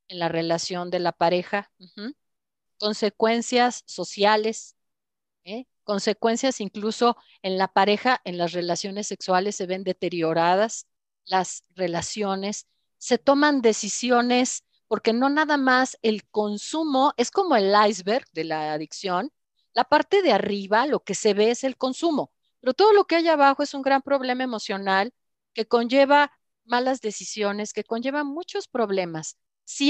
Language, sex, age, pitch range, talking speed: Spanish, female, 40-59, 195-265 Hz, 140 wpm